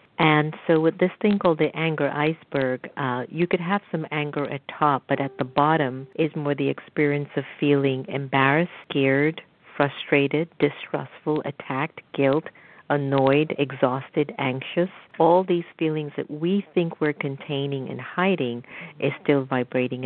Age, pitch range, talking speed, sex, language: 50-69, 135-165 Hz, 145 wpm, female, English